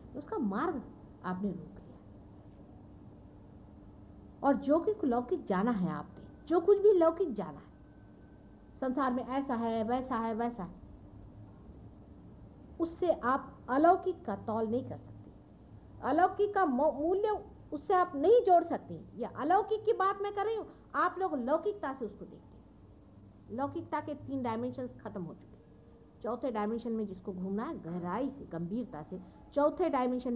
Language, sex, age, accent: English, female, 50-69, Indian